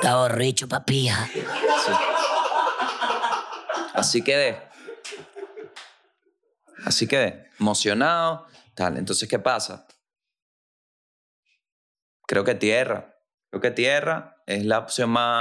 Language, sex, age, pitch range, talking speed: Spanish, male, 20-39, 105-135 Hz, 90 wpm